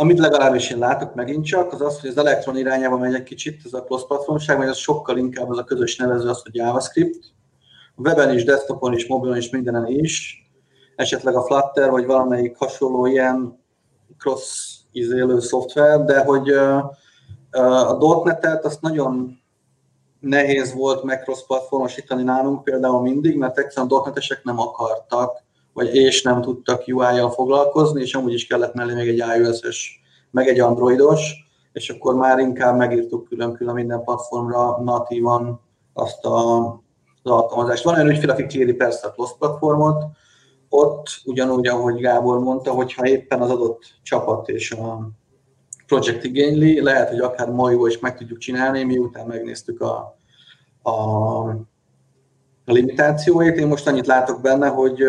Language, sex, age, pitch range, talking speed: Hungarian, male, 30-49, 120-140 Hz, 150 wpm